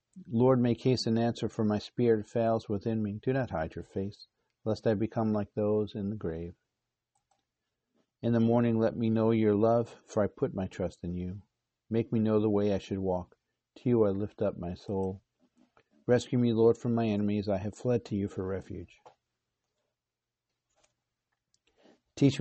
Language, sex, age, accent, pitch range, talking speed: English, male, 50-69, American, 95-115 Hz, 180 wpm